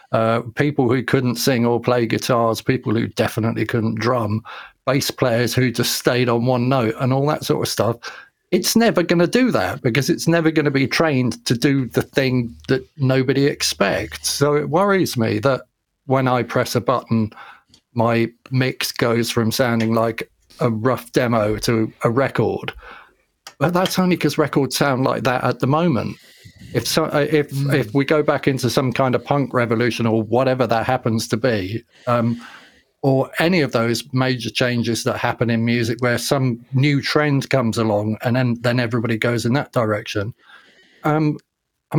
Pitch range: 115-140 Hz